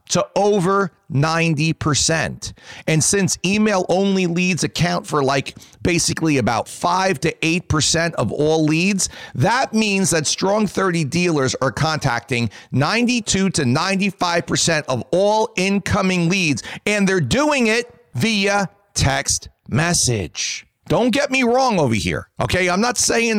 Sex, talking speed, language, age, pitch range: male, 140 wpm, English, 40-59, 145-205 Hz